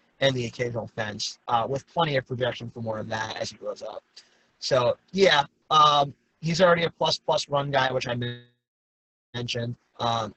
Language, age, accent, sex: English, 30-49, American, male